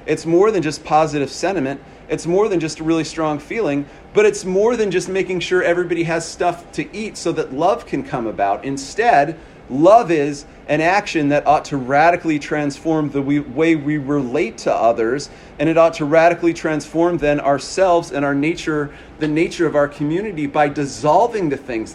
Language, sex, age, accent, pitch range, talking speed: English, male, 40-59, American, 145-170 Hz, 185 wpm